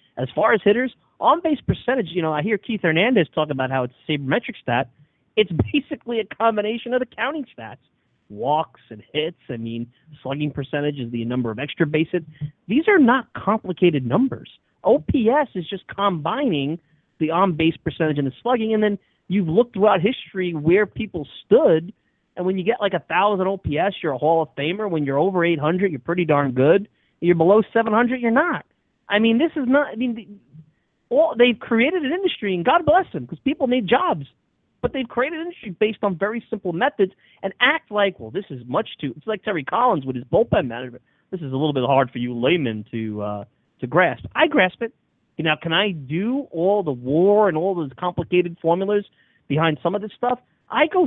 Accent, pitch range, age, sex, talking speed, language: American, 150-225 Hz, 30-49, male, 205 wpm, English